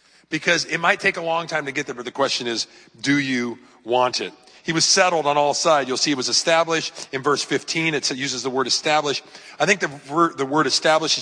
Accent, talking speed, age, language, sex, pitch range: American, 230 wpm, 40-59, English, male, 125-155 Hz